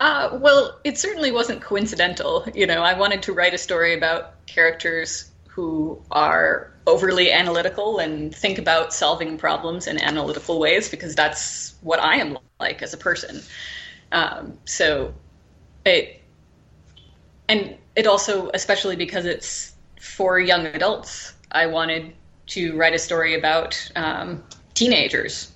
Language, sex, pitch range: English, female, 160-205 Hz